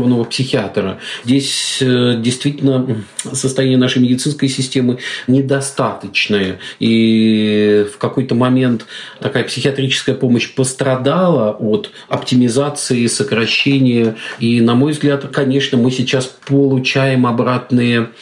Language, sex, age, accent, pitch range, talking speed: Russian, male, 40-59, native, 120-140 Hz, 95 wpm